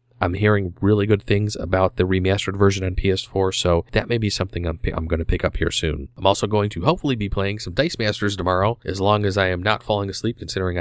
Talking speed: 250 wpm